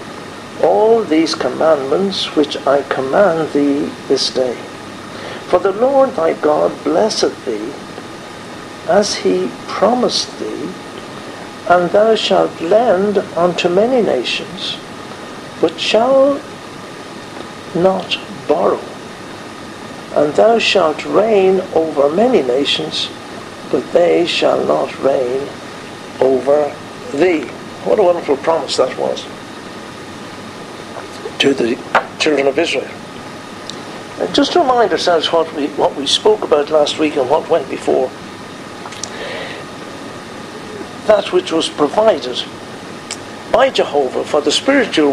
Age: 60-79